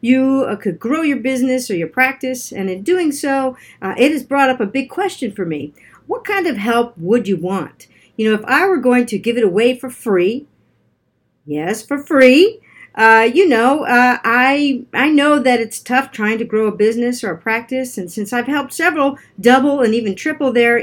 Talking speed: 210 wpm